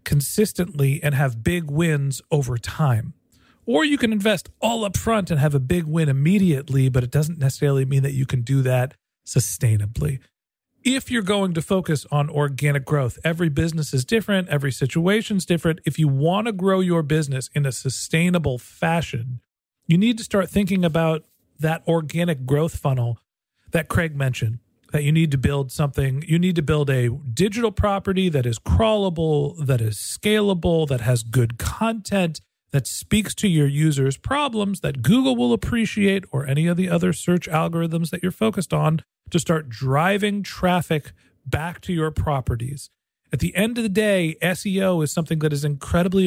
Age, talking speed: 40-59, 175 wpm